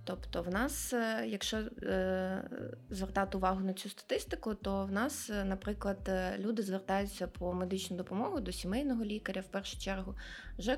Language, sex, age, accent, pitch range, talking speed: Ukrainian, female, 20-39, native, 190-230 Hz, 140 wpm